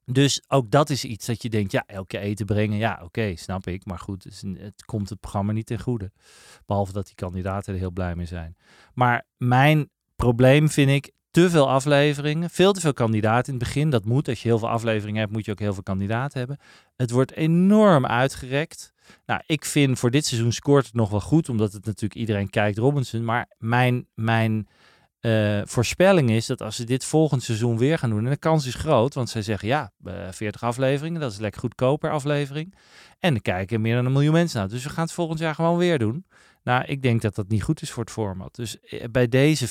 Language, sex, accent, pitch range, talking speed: Dutch, male, Dutch, 110-140 Hz, 225 wpm